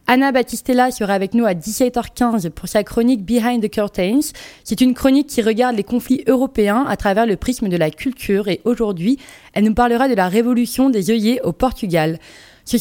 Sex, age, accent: female, 20-39, French